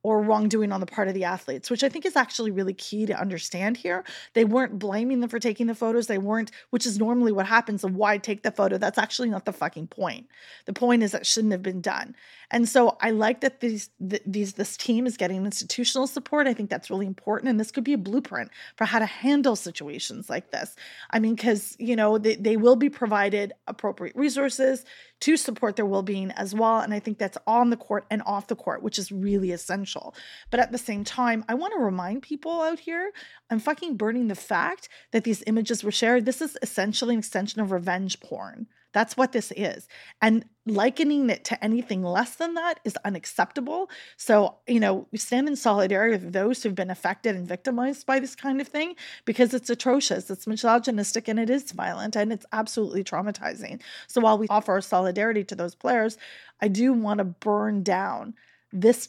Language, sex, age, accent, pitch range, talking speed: English, female, 30-49, American, 205-245 Hz, 210 wpm